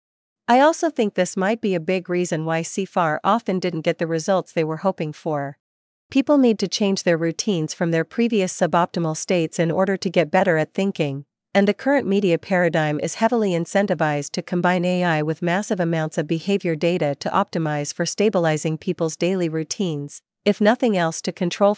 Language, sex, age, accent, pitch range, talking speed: English, female, 40-59, American, 160-200 Hz, 185 wpm